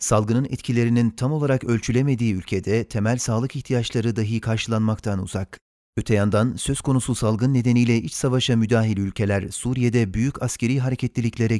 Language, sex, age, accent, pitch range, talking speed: Turkish, male, 40-59, native, 110-130 Hz, 135 wpm